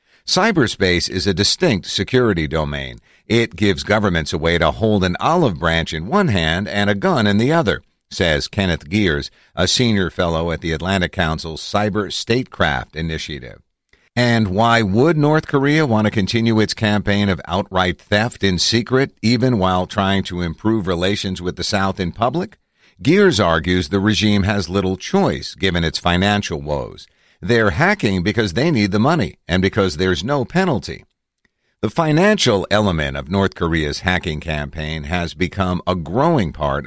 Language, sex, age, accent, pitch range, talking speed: English, male, 50-69, American, 85-110 Hz, 165 wpm